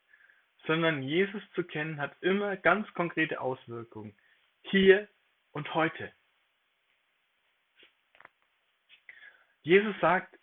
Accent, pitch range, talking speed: German, 150-210 Hz, 80 wpm